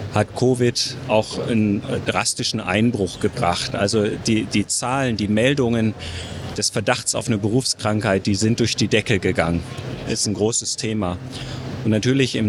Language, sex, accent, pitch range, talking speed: German, male, German, 105-120 Hz, 150 wpm